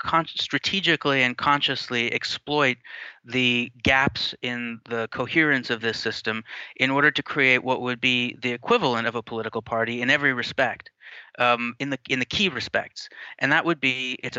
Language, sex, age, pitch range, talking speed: English, male, 30-49, 120-140 Hz, 165 wpm